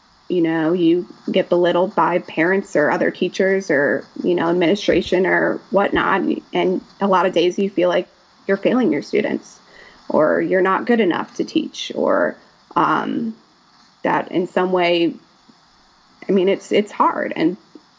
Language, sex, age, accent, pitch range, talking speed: English, female, 20-39, American, 180-225 Hz, 155 wpm